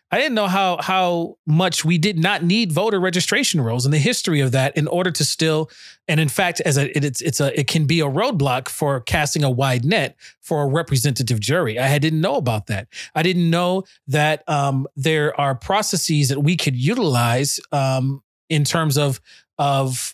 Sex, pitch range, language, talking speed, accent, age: male, 135-170 Hz, English, 195 wpm, American, 30-49